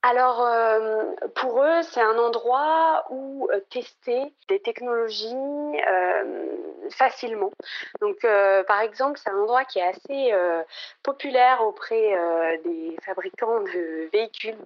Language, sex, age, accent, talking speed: French, female, 30-49, French, 130 wpm